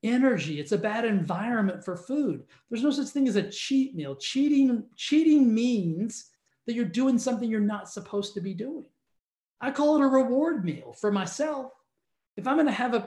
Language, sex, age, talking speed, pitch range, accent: English, male, 40-59, 195 wpm, 190-250 Hz, American